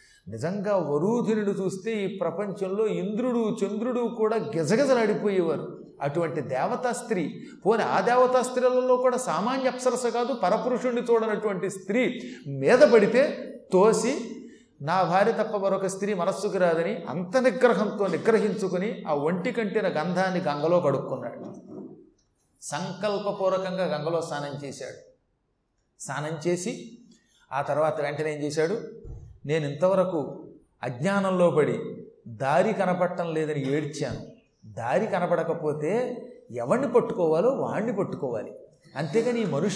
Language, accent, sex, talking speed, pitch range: Telugu, native, male, 95 wpm, 160-235 Hz